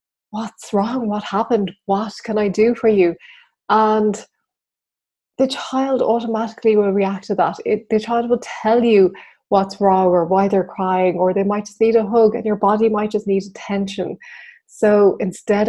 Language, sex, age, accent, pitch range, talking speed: English, female, 20-39, Irish, 190-225 Hz, 170 wpm